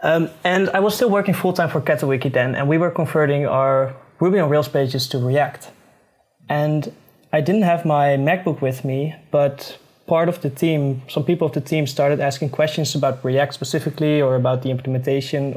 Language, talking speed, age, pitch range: English, 195 wpm, 20-39, 130-155 Hz